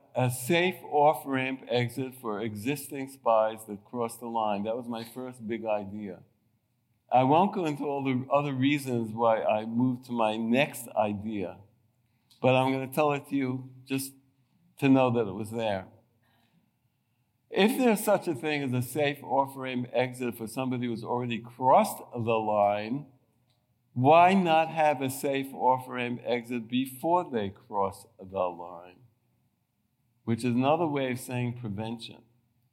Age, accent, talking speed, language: 60-79, American, 150 wpm, English